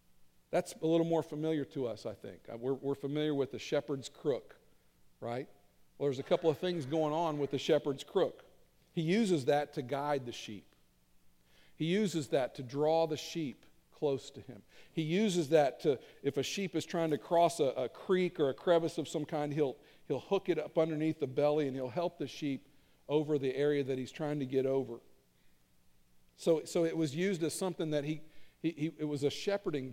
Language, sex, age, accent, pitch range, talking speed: English, male, 50-69, American, 120-160 Hz, 205 wpm